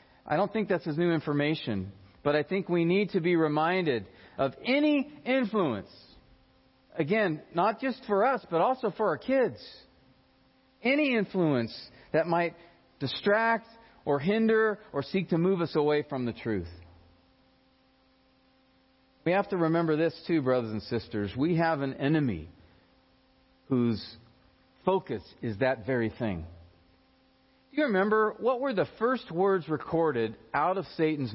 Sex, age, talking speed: male, 40-59, 140 wpm